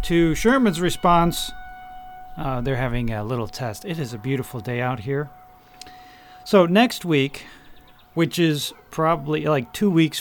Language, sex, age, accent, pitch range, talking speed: English, male, 40-59, American, 120-165 Hz, 145 wpm